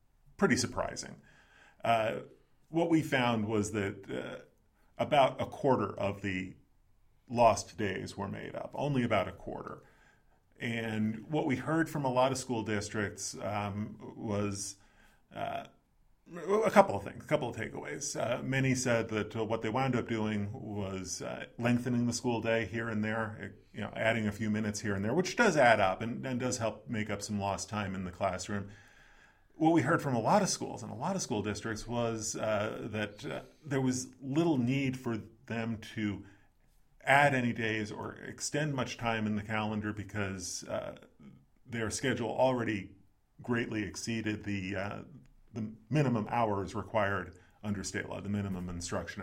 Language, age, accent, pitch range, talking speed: English, 40-59, American, 100-120 Hz, 170 wpm